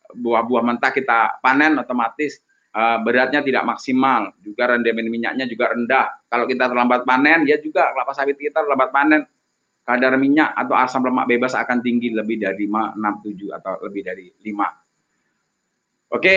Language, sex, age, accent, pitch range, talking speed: Indonesian, male, 30-49, native, 125-155 Hz, 160 wpm